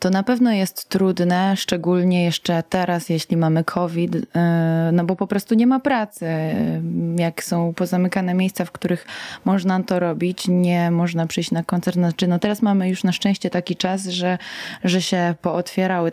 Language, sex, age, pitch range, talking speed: Polish, female, 20-39, 175-200 Hz, 165 wpm